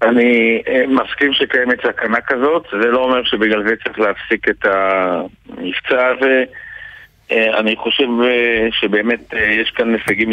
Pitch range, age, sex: 100-120 Hz, 50-69, male